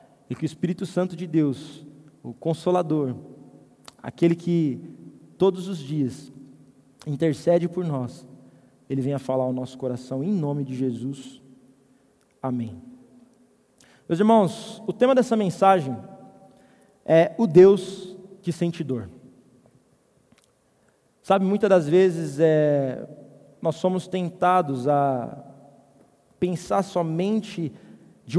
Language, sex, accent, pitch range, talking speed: Portuguese, male, Brazilian, 150-205 Hz, 110 wpm